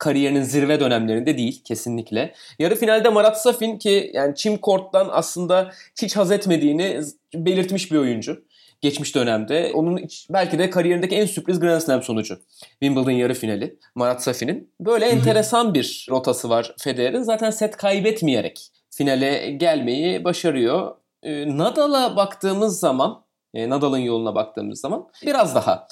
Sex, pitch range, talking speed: male, 130-195 Hz, 130 wpm